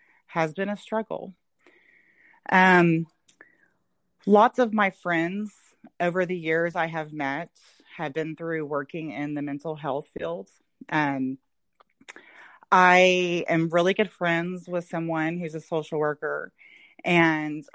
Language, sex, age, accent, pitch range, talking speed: English, female, 30-49, American, 150-180 Hz, 130 wpm